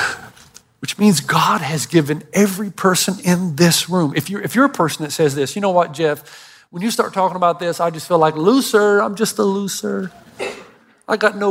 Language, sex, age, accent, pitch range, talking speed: English, male, 50-69, American, 145-195 Hz, 210 wpm